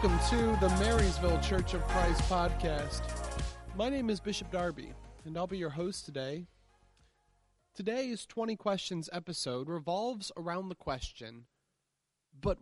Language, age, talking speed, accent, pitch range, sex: English, 30-49, 135 wpm, American, 140-195 Hz, male